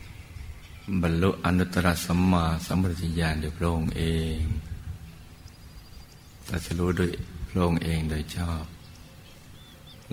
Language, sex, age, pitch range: Thai, male, 60-79, 80-90 Hz